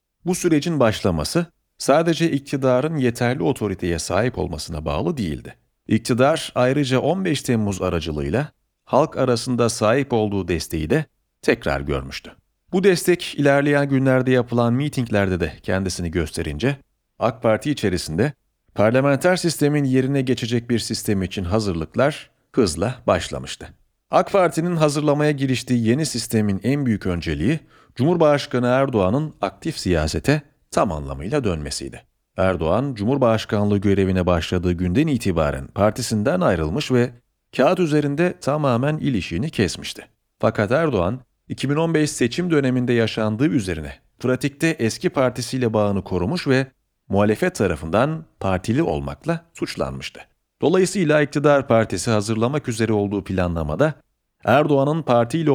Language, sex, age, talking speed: Turkish, male, 40-59, 110 wpm